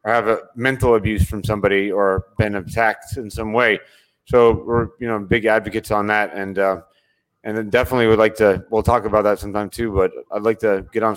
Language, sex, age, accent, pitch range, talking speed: English, male, 30-49, American, 105-120 Hz, 215 wpm